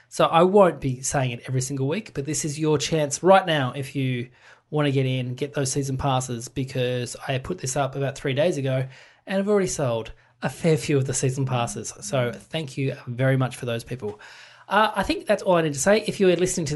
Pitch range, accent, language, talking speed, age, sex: 135-165 Hz, Australian, English, 240 wpm, 20-39, male